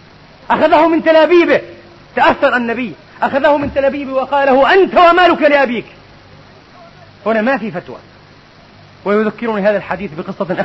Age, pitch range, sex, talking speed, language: 30-49, 200-255 Hz, male, 115 wpm, Arabic